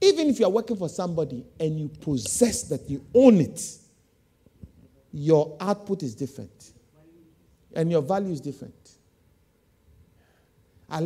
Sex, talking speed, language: male, 130 wpm, English